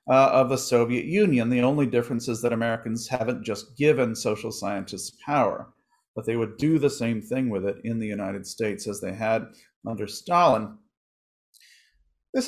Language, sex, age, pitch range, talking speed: English, male, 40-59, 120-155 Hz, 175 wpm